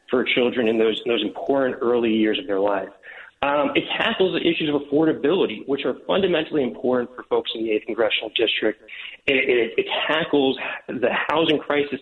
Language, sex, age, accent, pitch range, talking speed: English, male, 40-59, American, 115-145 Hz, 185 wpm